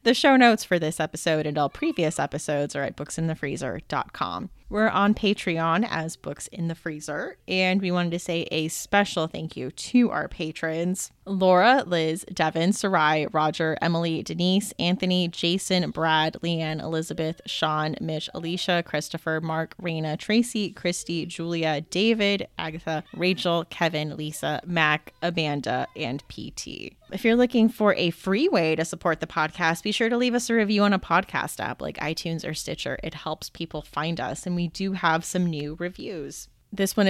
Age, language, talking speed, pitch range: 20-39, English, 165 wpm, 160-195 Hz